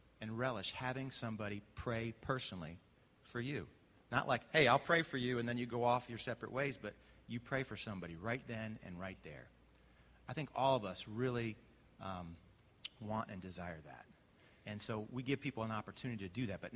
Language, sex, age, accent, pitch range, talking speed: English, male, 30-49, American, 105-130 Hz, 195 wpm